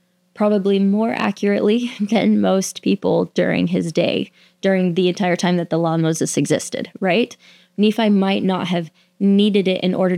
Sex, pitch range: female, 180-210 Hz